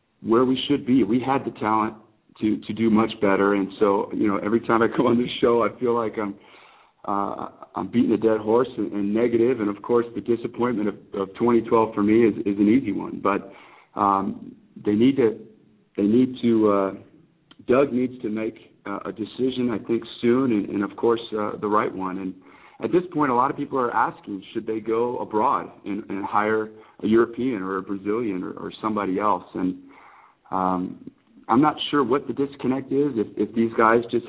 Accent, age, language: American, 40-59, English